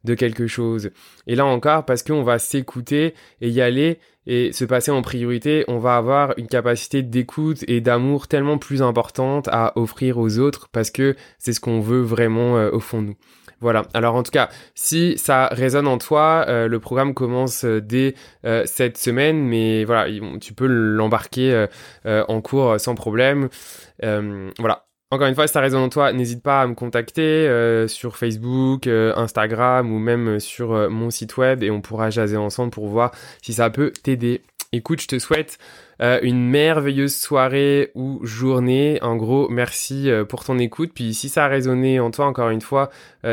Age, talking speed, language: 20-39, 185 wpm, French